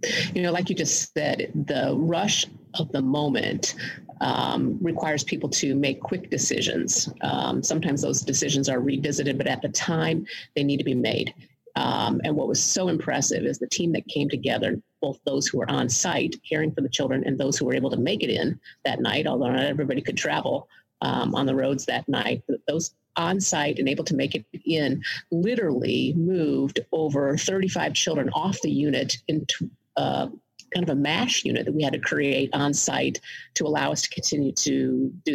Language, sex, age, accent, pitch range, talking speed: English, female, 40-59, American, 145-185 Hz, 195 wpm